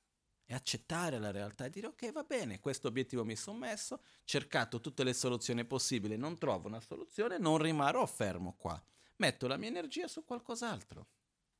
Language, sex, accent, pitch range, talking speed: Italian, male, native, 115-165 Hz, 175 wpm